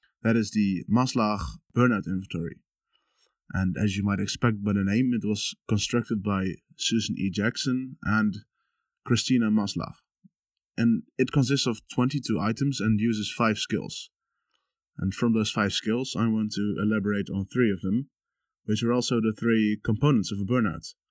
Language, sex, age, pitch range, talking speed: English, male, 20-39, 105-120 Hz, 160 wpm